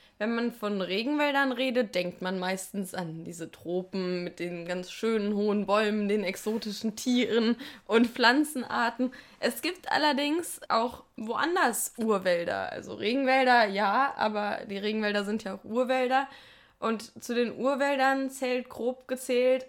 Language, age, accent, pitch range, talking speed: German, 10-29, German, 200-245 Hz, 135 wpm